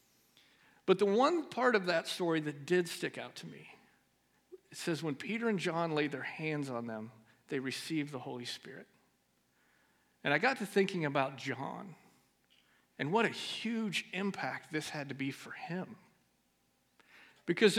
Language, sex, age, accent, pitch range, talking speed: English, male, 50-69, American, 145-200 Hz, 160 wpm